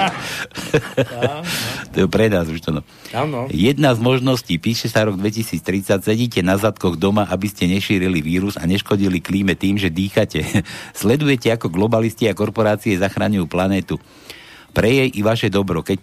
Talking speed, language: 155 wpm, Slovak